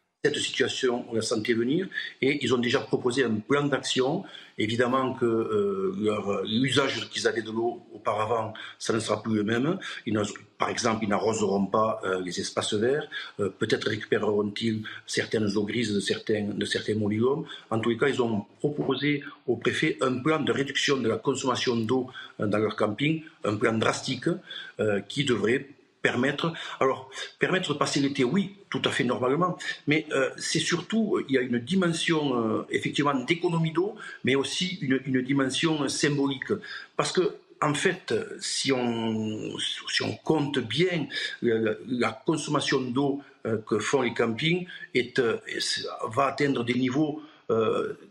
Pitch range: 115-165 Hz